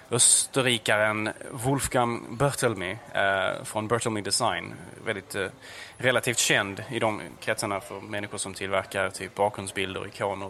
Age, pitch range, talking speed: 20-39, 105-130 Hz, 120 wpm